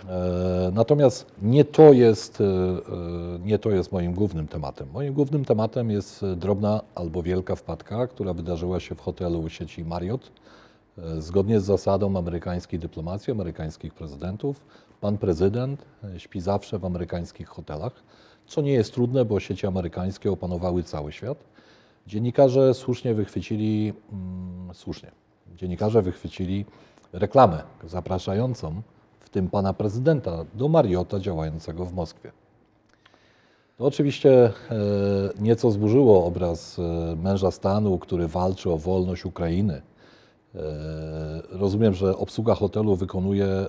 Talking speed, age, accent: 110 wpm, 40-59, native